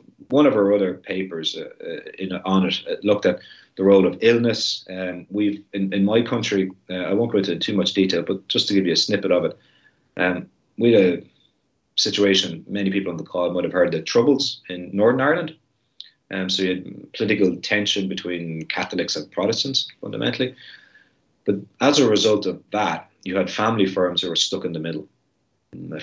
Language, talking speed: English, 195 wpm